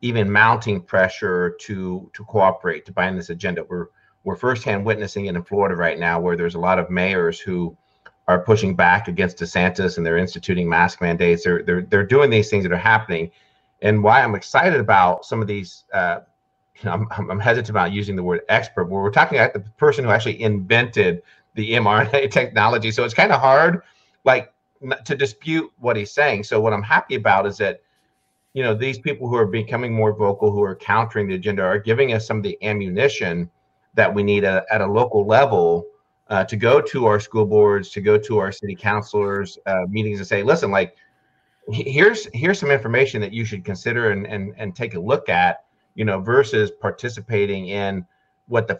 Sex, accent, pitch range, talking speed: male, American, 100-115 Hz, 200 wpm